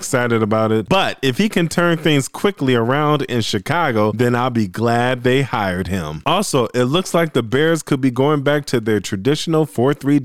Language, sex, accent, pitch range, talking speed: English, male, American, 110-150 Hz, 200 wpm